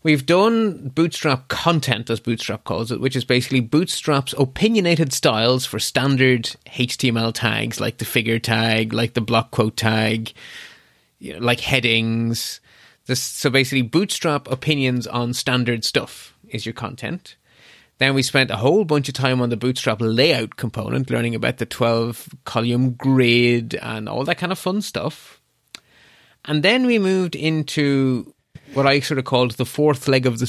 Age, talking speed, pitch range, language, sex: 30-49, 155 wpm, 120-150 Hz, English, male